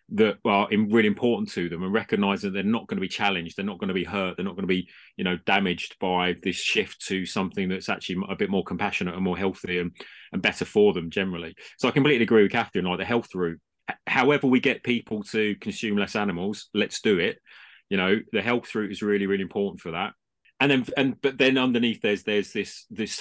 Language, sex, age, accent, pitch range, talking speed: English, male, 30-49, British, 95-120 Hz, 240 wpm